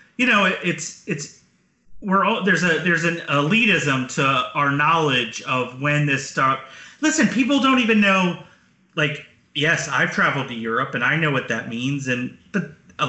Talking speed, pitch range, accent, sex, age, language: 175 wpm, 135-180 Hz, American, male, 30-49, English